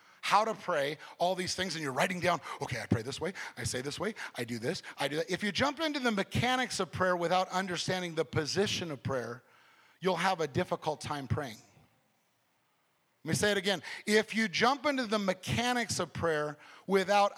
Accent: American